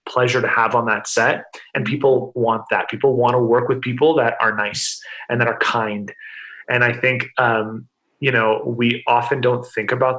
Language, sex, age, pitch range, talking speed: English, male, 30-49, 120-145 Hz, 200 wpm